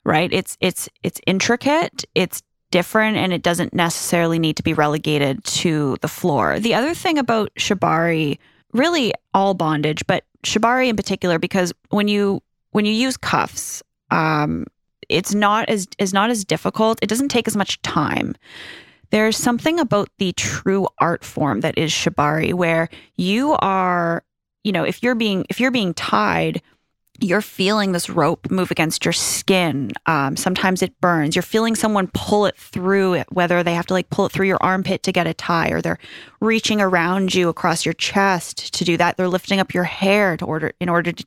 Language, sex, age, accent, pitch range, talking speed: English, female, 20-39, American, 170-210 Hz, 185 wpm